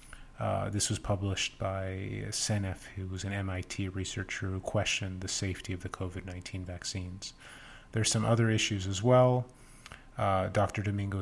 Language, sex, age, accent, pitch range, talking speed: English, male, 30-49, American, 95-110 Hz, 150 wpm